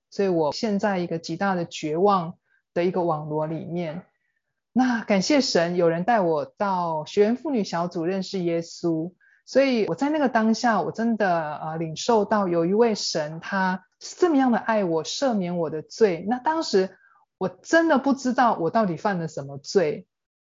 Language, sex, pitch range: Chinese, male, 165-220 Hz